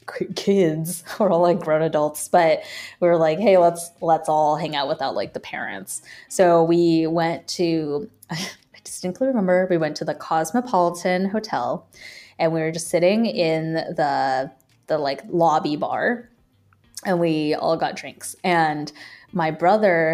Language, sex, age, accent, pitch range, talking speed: English, female, 20-39, American, 155-200 Hz, 155 wpm